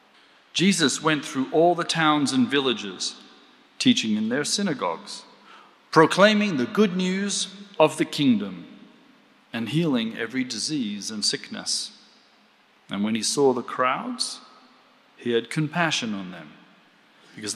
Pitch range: 115-185 Hz